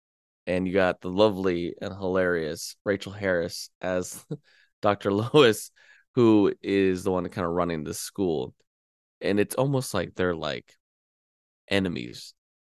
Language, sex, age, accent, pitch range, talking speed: English, male, 20-39, American, 85-110 Hz, 135 wpm